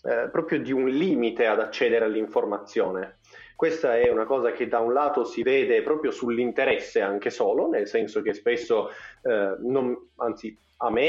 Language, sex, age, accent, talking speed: Italian, male, 30-49, native, 160 wpm